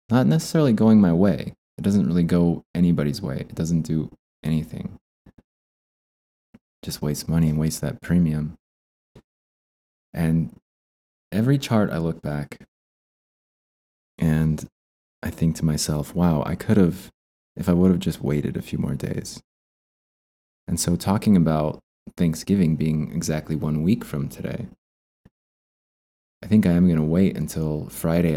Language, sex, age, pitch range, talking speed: English, male, 20-39, 75-90 Hz, 140 wpm